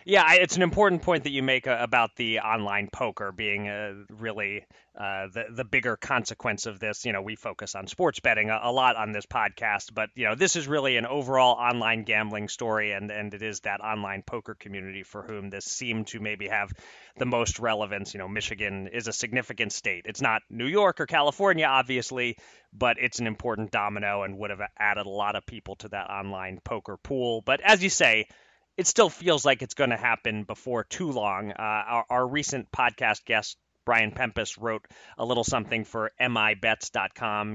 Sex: male